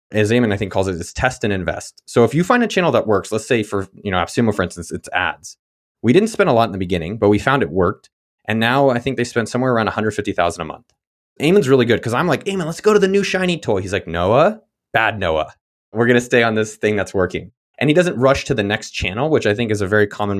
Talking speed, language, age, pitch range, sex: 280 wpm, English, 20-39, 100-140 Hz, male